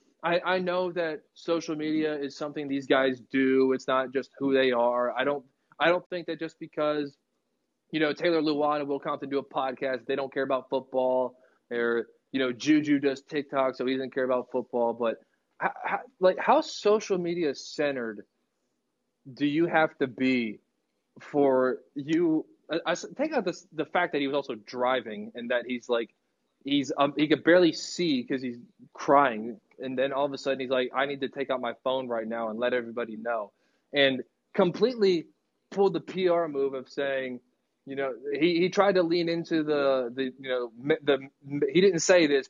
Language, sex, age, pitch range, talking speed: English, male, 20-39, 130-165 Hz, 195 wpm